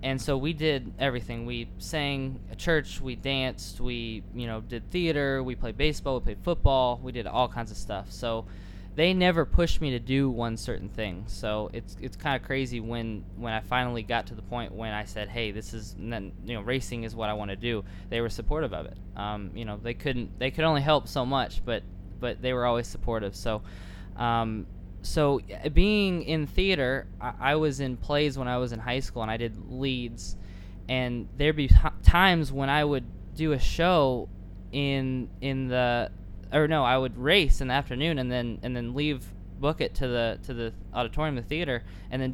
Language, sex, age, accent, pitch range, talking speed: English, male, 10-29, American, 105-140 Hz, 205 wpm